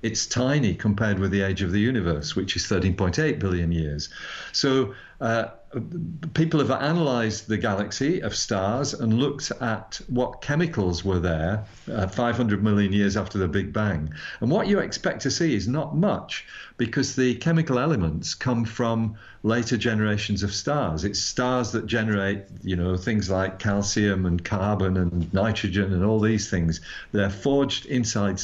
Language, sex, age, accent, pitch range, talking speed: English, male, 50-69, British, 95-125 Hz, 160 wpm